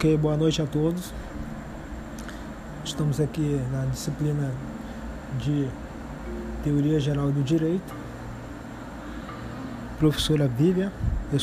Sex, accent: male, Brazilian